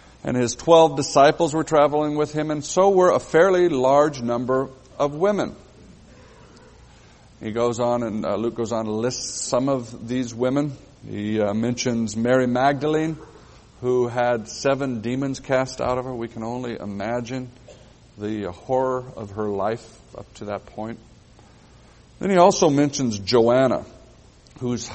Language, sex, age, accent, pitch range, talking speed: English, male, 50-69, American, 120-145 Hz, 145 wpm